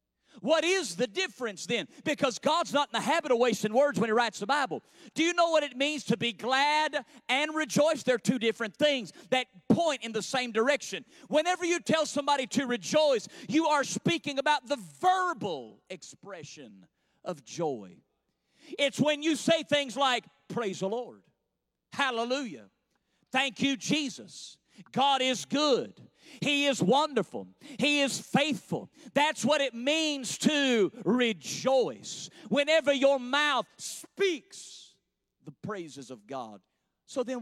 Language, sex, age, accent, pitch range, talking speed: English, male, 50-69, American, 200-290 Hz, 150 wpm